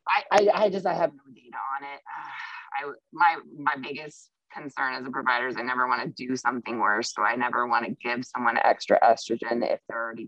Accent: American